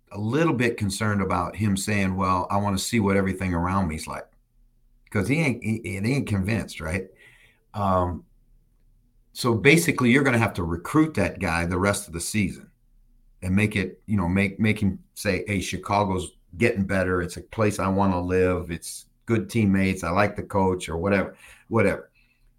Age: 50-69